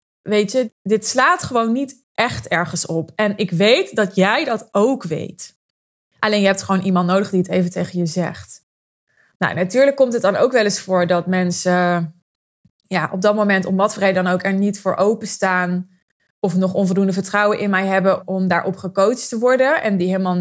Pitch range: 185-230 Hz